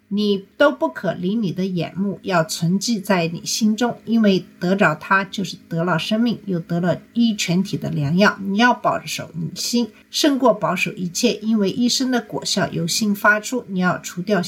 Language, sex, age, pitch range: Chinese, female, 50-69, 180-235 Hz